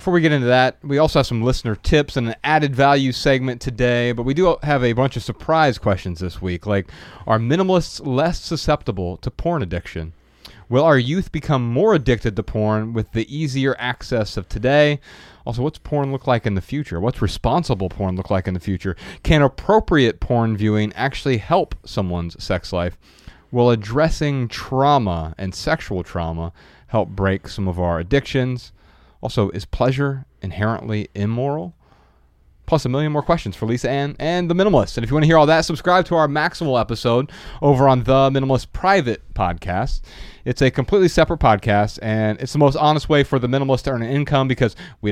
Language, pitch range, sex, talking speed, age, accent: English, 100-145 Hz, male, 190 wpm, 30-49, American